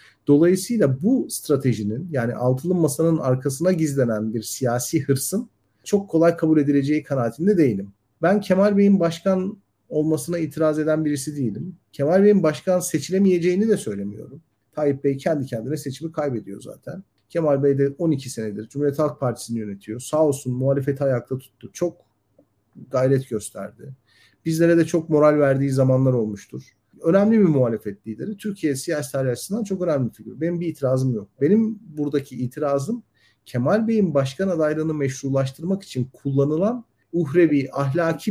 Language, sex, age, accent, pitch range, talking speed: Turkish, male, 50-69, native, 130-170 Hz, 140 wpm